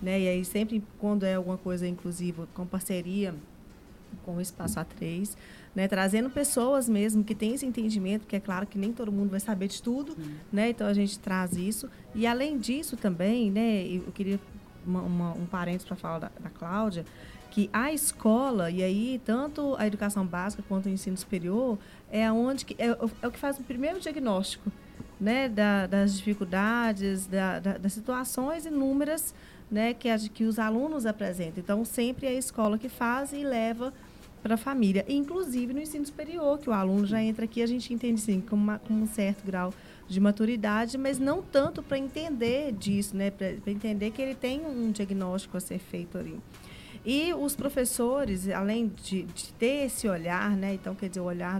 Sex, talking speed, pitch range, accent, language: female, 190 wpm, 190-240 Hz, Brazilian, Portuguese